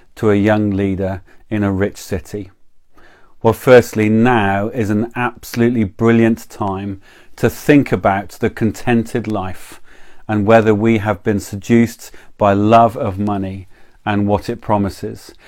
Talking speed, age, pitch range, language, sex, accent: 140 wpm, 40-59, 100-120 Hz, English, male, British